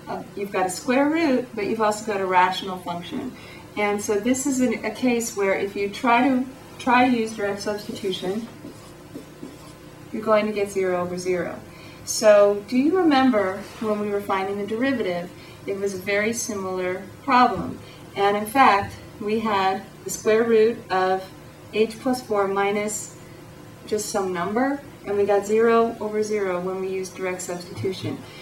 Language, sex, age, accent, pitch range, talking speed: English, female, 30-49, American, 190-235 Hz, 165 wpm